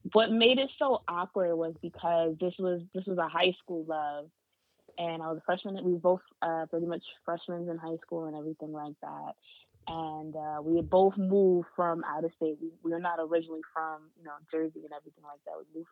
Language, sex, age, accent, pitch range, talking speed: English, female, 20-39, American, 150-175 Hz, 225 wpm